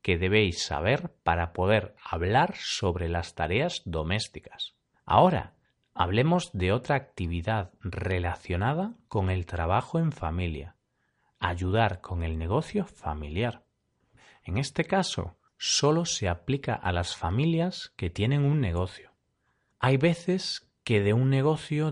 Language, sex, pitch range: Spanish, male, 90-140 Hz